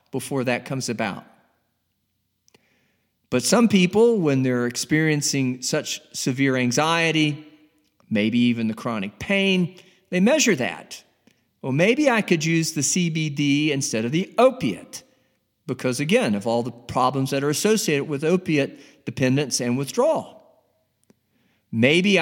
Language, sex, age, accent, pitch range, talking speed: English, male, 50-69, American, 120-165 Hz, 125 wpm